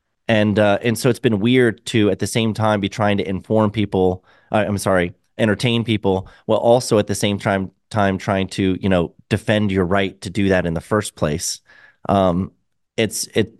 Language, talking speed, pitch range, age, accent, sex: English, 205 wpm, 95-115 Hz, 30-49, American, male